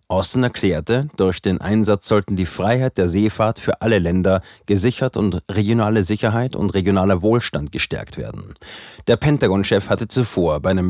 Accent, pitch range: German, 95-115 Hz